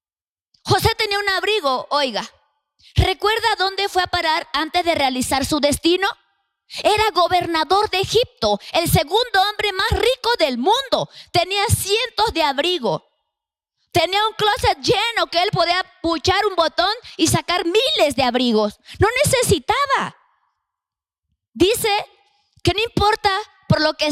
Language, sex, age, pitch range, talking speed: Spanish, female, 20-39, 300-395 Hz, 135 wpm